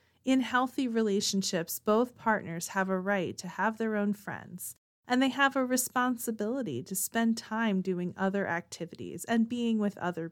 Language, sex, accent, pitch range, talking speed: English, female, American, 185-235 Hz, 165 wpm